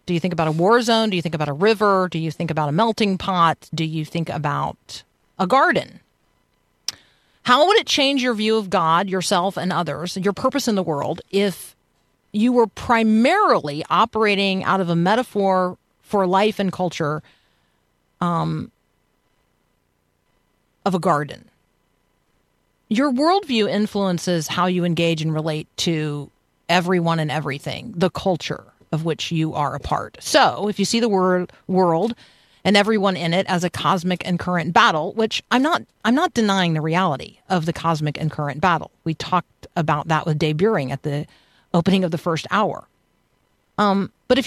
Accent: American